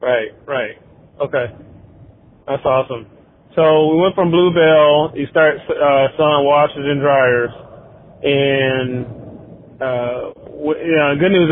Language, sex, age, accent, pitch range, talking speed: English, male, 20-39, American, 135-165 Hz, 130 wpm